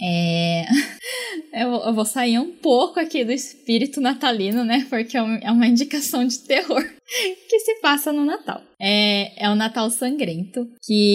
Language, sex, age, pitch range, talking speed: Portuguese, female, 10-29, 185-240 Hz, 150 wpm